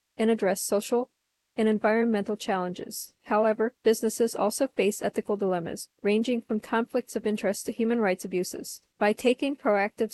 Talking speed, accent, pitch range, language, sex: 140 wpm, American, 205-230 Hz, English, female